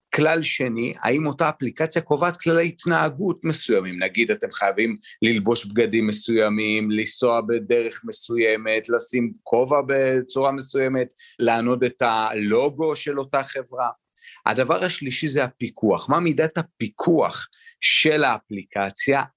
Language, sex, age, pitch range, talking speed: Hebrew, male, 30-49, 110-155 Hz, 115 wpm